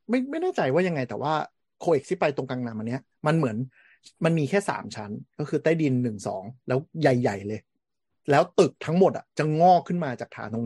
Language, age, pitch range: Thai, 30-49, 120-150 Hz